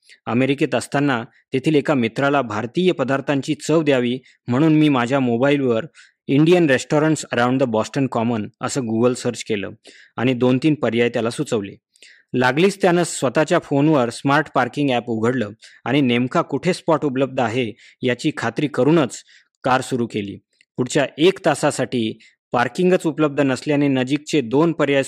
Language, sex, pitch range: Marathi, male, 120-150 Hz